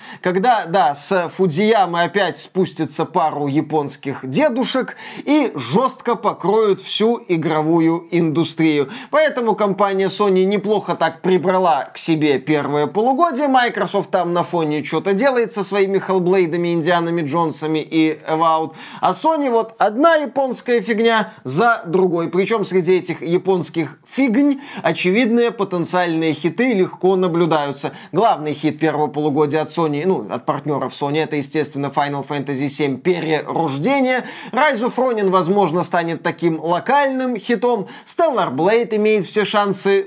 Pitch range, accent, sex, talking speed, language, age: 160-200 Hz, native, male, 125 wpm, Russian, 20-39